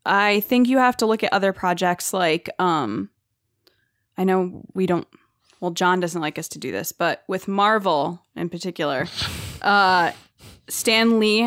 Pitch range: 180-215 Hz